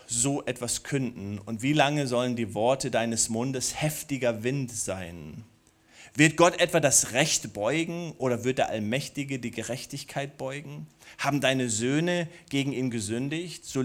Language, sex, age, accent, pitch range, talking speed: German, male, 40-59, German, 120-155 Hz, 145 wpm